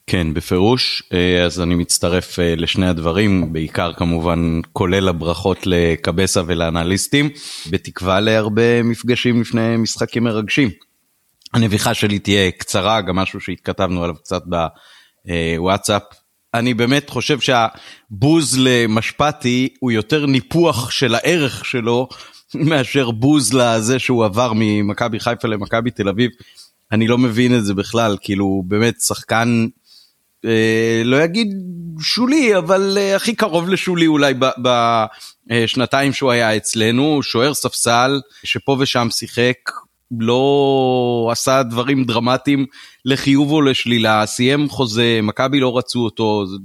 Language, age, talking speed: Hebrew, 30-49, 115 wpm